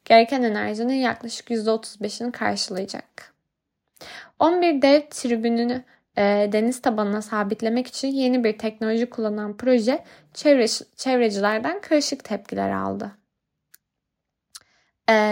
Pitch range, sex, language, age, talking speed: 210-255 Hz, female, Turkish, 10-29, 95 wpm